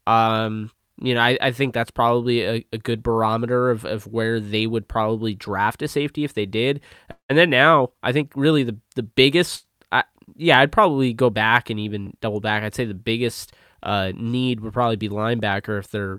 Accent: American